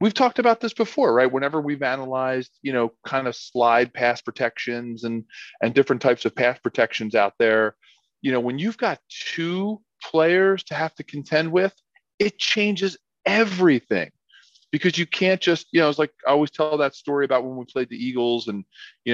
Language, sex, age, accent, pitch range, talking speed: English, male, 40-59, American, 120-150 Hz, 190 wpm